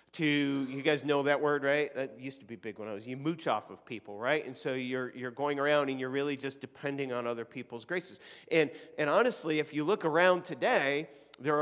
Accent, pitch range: American, 140-175 Hz